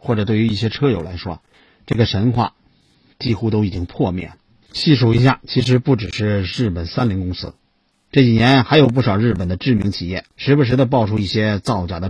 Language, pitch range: Chinese, 95-130 Hz